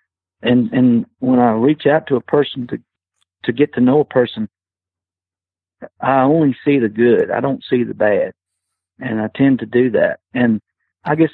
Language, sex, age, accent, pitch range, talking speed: English, male, 50-69, American, 105-135 Hz, 185 wpm